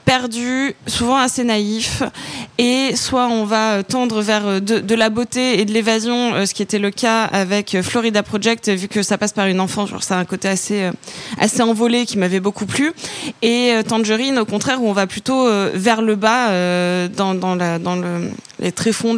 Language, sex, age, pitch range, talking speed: French, female, 20-39, 205-245 Hz, 195 wpm